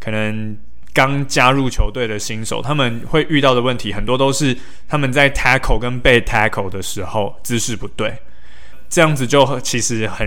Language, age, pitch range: Chinese, 20-39, 110-140 Hz